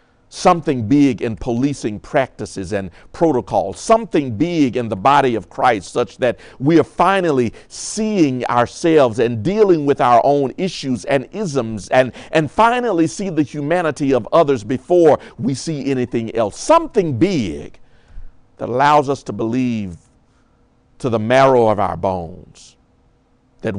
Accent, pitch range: American, 115-150 Hz